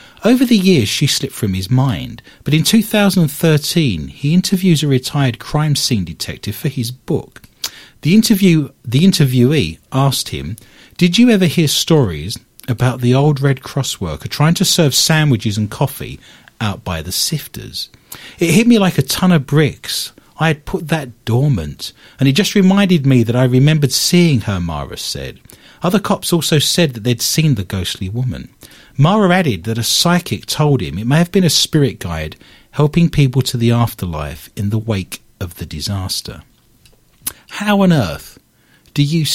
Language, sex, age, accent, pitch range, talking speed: English, male, 40-59, British, 115-160 Hz, 170 wpm